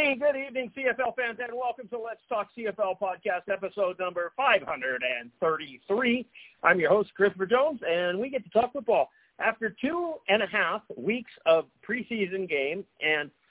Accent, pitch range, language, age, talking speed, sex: American, 170-245 Hz, English, 50-69, 155 wpm, male